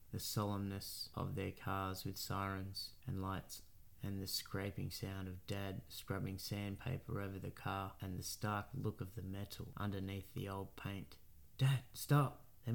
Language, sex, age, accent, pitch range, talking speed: English, male, 20-39, Australian, 95-115 Hz, 160 wpm